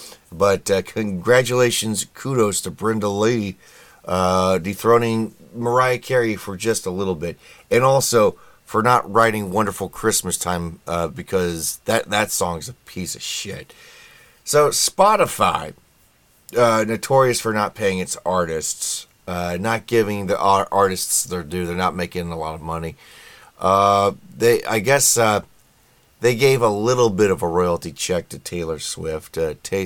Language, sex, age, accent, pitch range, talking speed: English, male, 30-49, American, 85-115 Hz, 155 wpm